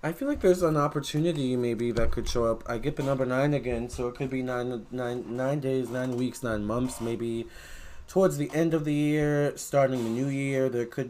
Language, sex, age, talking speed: English, male, 20-39, 220 wpm